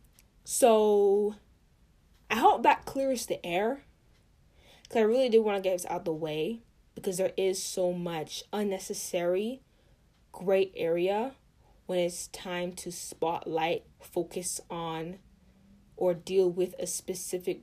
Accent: American